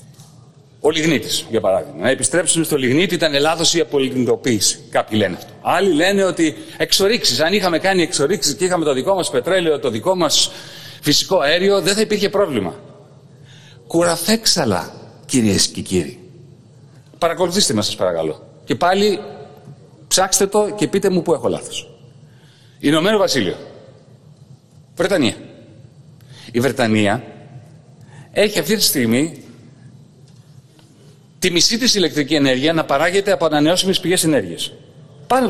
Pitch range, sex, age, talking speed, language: 140-185 Hz, male, 40-59, 130 wpm, Greek